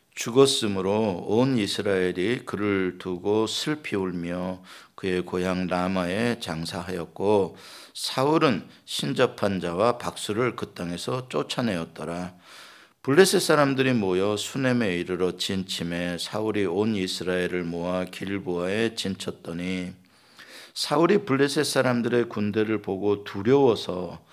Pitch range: 90-115 Hz